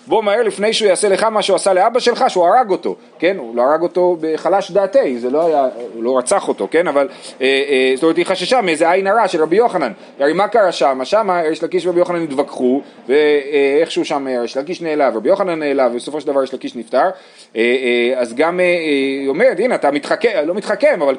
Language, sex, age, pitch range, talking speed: Hebrew, male, 30-49, 150-220 Hz, 230 wpm